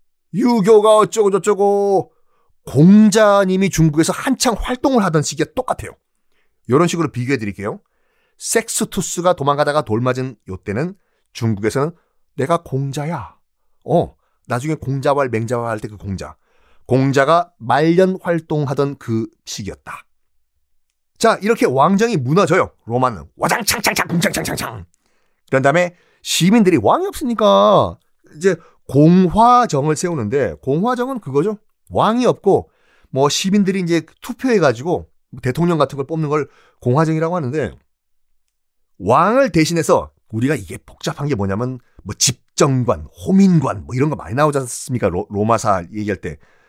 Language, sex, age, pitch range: Korean, male, 30-49, 125-200 Hz